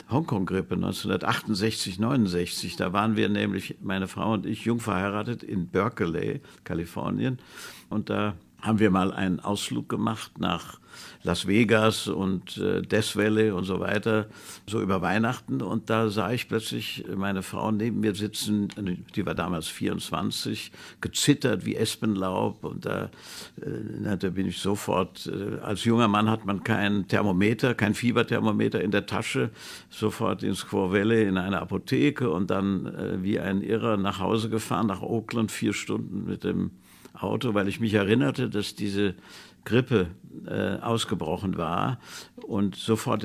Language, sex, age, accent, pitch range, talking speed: German, male, 60-79, German, 95-110 Hz, 150 wpm